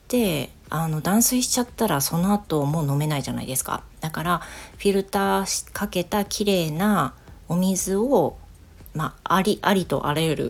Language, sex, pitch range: Japanese, female, 145-195 Hz